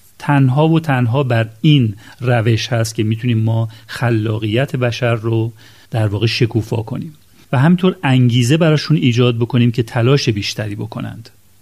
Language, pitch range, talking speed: Persian, 110-135 Hz, 140 wpm